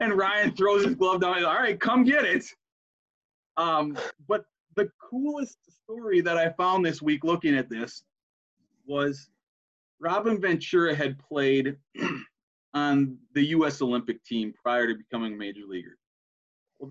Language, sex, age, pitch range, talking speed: English, male, 30-49, 125-165 Hz, 155 wpm